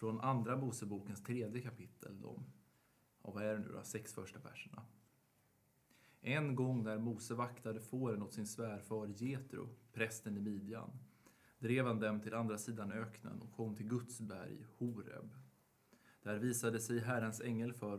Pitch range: 105-125 Hz